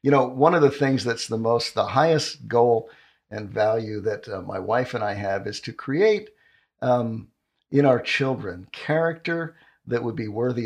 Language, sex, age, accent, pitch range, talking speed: English, male, 50-69, American, 110-140 Hz, 185 wpm